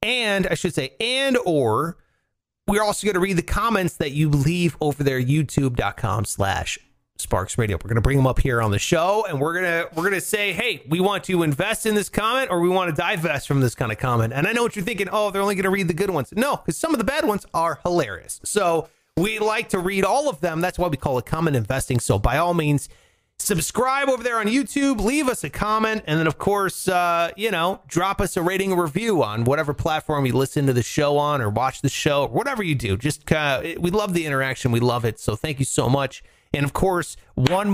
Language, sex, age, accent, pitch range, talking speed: English, male, 30-49, American, 140-205 Hz, 250 wpm